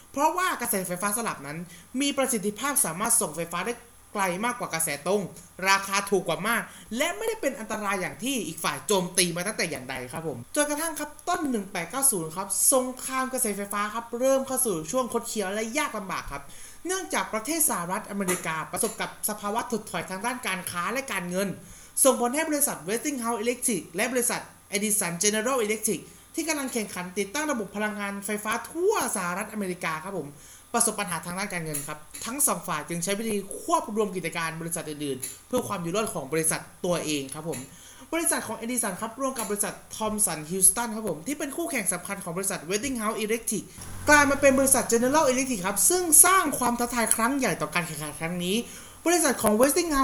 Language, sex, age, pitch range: Thai, male, 20-39, 185-260 Hz